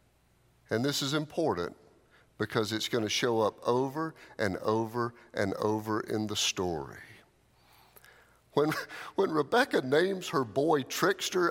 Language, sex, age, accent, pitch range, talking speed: English, male, 50-69, American, 115-160 Hz, 130 wpm